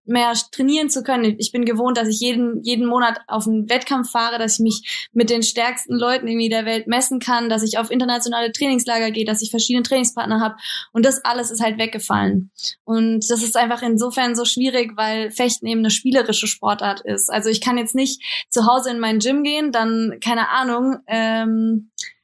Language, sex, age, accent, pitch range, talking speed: German, female, 20-39, German, 220-245 Hz, 200 wpm